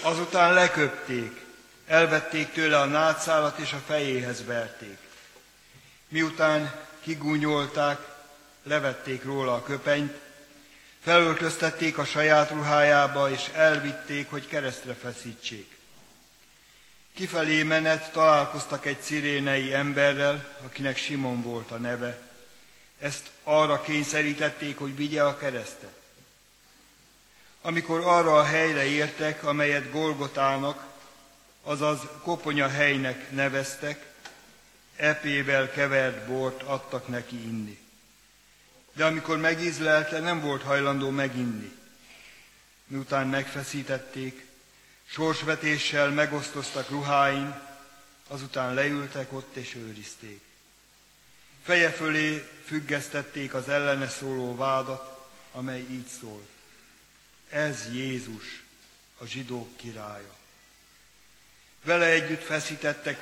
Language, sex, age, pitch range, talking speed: Hungarian, male, 60-79, 130-150 Hz, 90 wpm